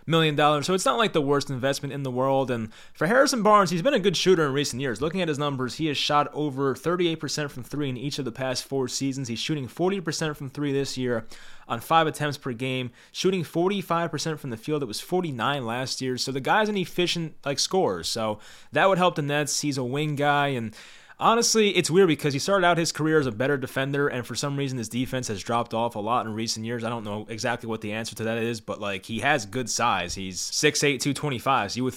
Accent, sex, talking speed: American, male, 250 wpm